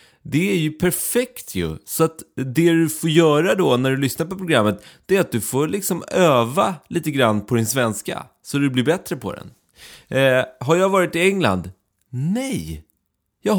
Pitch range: 110-165 Hz